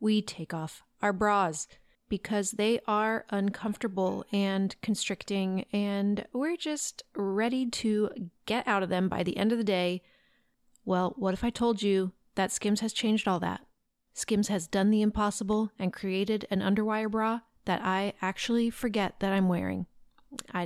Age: 30-49